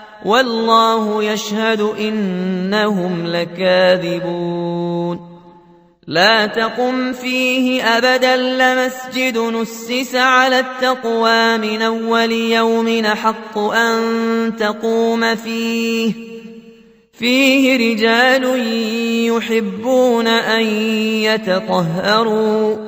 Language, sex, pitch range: Arabic, male, 210-230 Hz